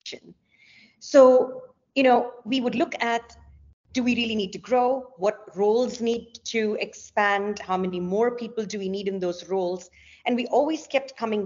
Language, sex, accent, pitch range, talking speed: English, female, Indian, 175-235 Hz, 175 wpm